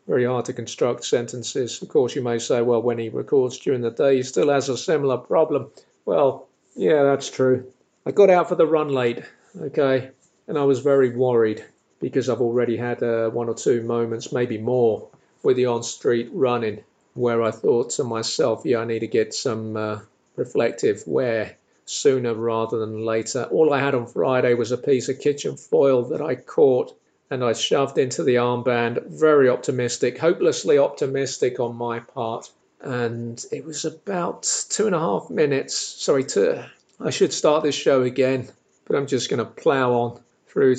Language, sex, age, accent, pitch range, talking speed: English, male, 40-59, British, 115-135 Hz, 185 wpm